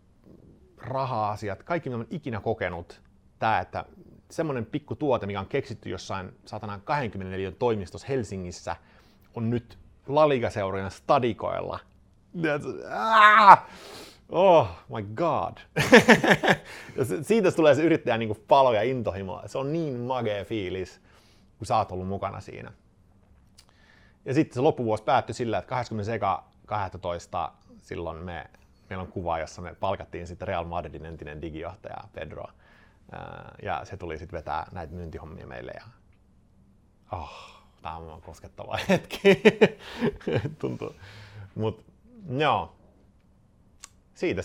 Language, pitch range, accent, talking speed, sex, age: Finnish, 90-115 Hz, native, 115 wpm, male, 30-49